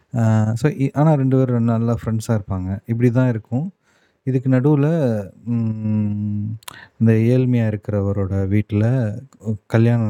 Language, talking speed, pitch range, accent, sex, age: Tamil, 100 wpm, 105-120 Hz, native, male, 30-49